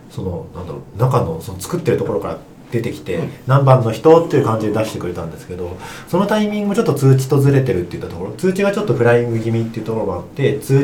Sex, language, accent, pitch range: male, Japanese, native, 100-150 Hz